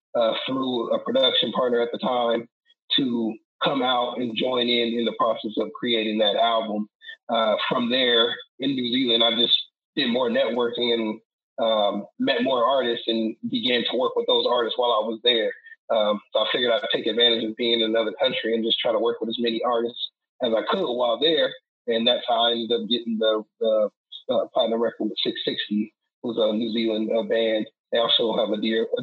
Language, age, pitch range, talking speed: English, 30-49, 115-130 Hz, 210 wpm